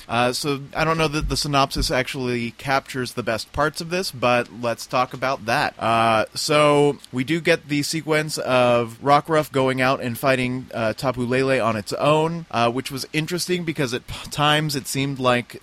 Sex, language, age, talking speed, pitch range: male, English, 30-49, 190 wpm, 115-135 Hz